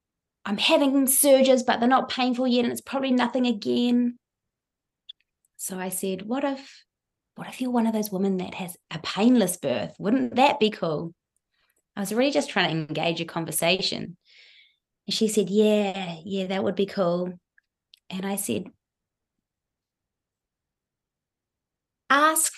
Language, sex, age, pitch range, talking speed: English, female, 20-39, 185-245 Hz, 150 wpm